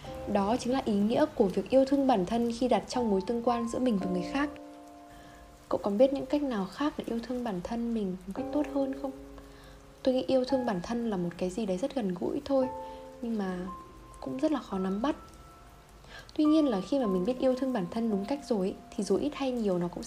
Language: Vietnamese